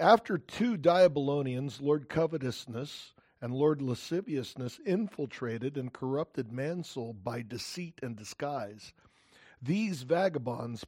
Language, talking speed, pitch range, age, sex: English, 100 wpm, 120-155 Hz, 50-69, male